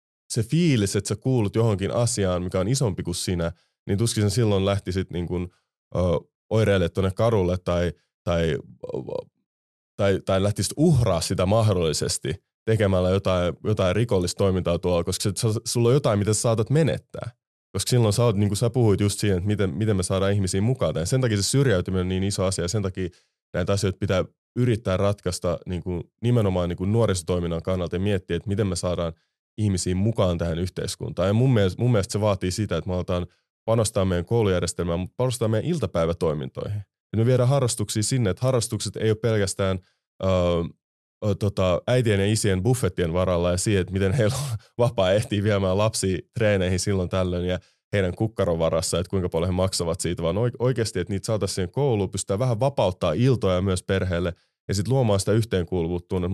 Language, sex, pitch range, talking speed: Finnish, male, 90-110 Hz, 175 wpm